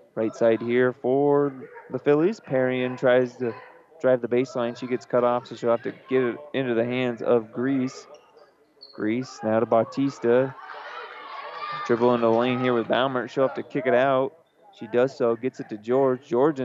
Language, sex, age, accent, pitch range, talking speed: English, male, 20-39, American, 120-135 Hz, 185 wpm